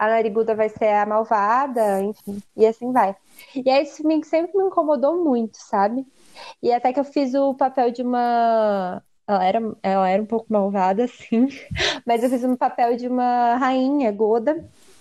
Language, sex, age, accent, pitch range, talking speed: Portuguese, female, 20-39, Brazilian, 220-275 Hz, 175 wpm